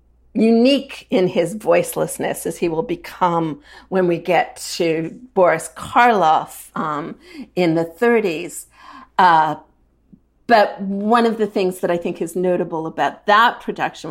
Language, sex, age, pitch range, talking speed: English, female, 40-59, 170-240 Hz, 135 wpm